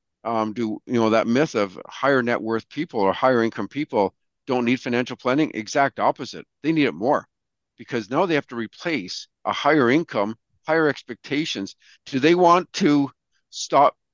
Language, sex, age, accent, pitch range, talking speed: English, male, 50-69, American, 110-145 Hz, 175 wpm